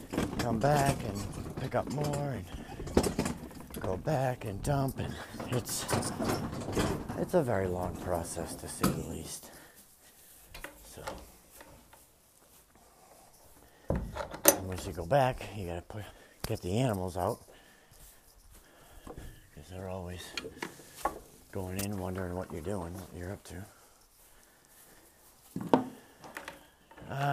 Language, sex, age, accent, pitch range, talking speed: English, male, 60-79, American, 90-120 Hz, 110 wpm